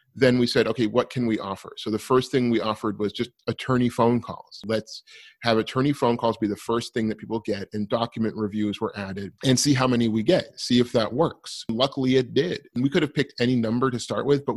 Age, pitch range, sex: 30-49, 105-120 Hz, male